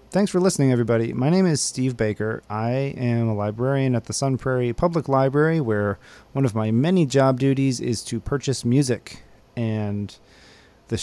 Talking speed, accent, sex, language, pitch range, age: 175 wpm, American, male, English, 110-135 Hz, 30-49